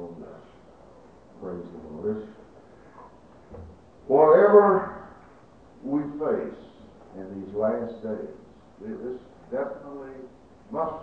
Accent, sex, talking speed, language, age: American, male, 75 wpm, English, 60-79